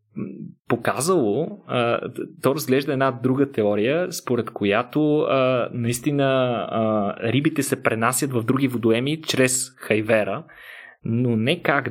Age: 20-39